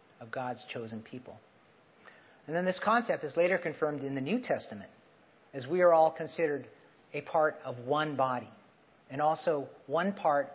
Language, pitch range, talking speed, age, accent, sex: English, 125-170 Hz, 165 wpm, 40-59, American, male